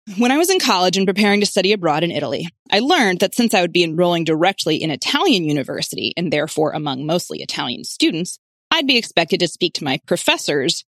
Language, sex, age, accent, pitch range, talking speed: English, female, 20-39, American, 160-230 Hz, 210 wpm